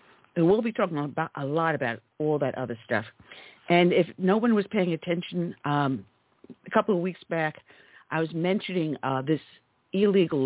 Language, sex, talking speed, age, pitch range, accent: English, female, 170 wpm, 50-69, 140-185 Hz, American